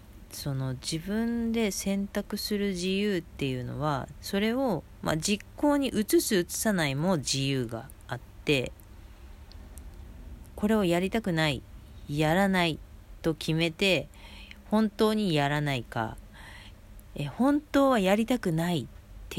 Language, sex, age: Japanese, female, 40-59